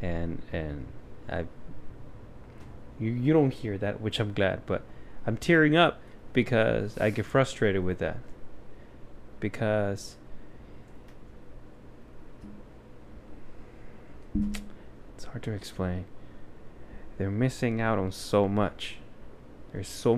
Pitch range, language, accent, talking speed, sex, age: 100-115 Hz, English, American, 100 wpm, male, 20-39